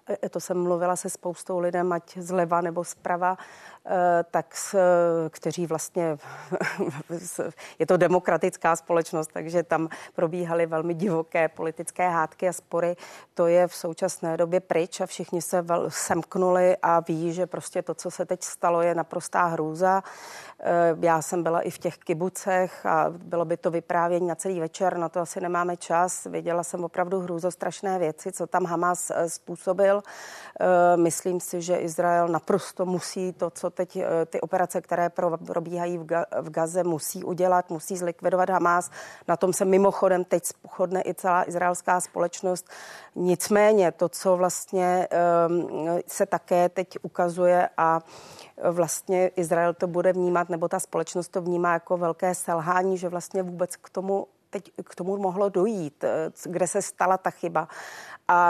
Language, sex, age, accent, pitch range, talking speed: Czech, female, 40-59, native, 170-185 Hz, 150 wpm